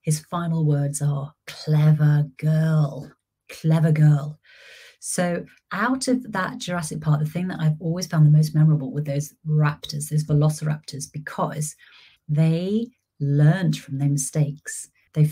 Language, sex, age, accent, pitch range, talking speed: English, female, 30-49, British, 150-165 Hz, 135 wpm